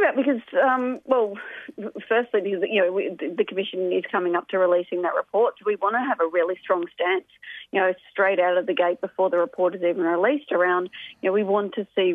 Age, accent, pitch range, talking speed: 40-59, Australian, 185-255 Hz, 210 wpm